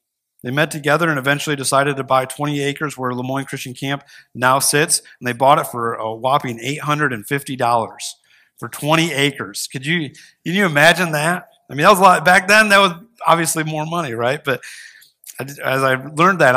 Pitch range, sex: 130-155 Hz, male